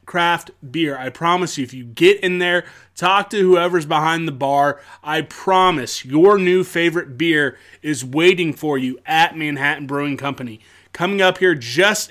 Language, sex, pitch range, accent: English, male, 145-185 Hz, American